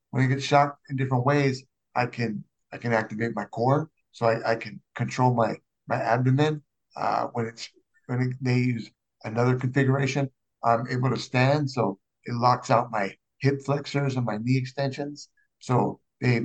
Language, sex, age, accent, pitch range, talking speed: English, male, 50-69, American, 115-140 Hz, 175 wpm